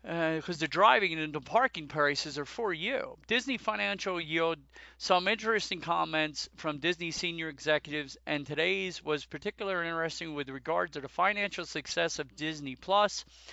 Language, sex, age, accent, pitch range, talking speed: English, male, 40-59, American, 150-195 Hz, 155 wpm